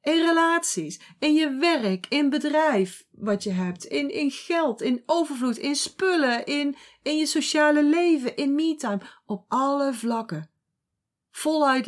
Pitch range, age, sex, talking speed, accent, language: 205-290 Hz, 40-59, female, 140 wpm, Dutch, Dutch